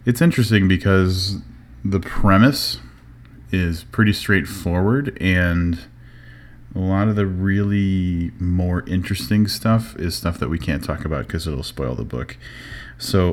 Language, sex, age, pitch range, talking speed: English, male, 30-49, 80-100 Hz, 135 wpm